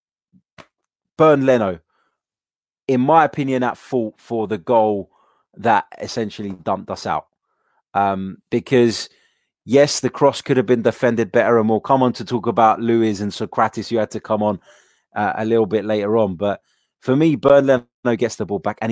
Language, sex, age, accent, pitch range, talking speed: English, male, 20-39, British, 115-135 Hz, 180 wpm